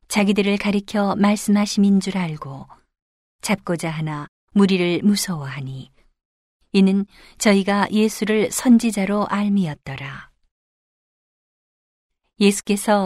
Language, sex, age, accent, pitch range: Korean, female, 40-59, native, 165-210 Hz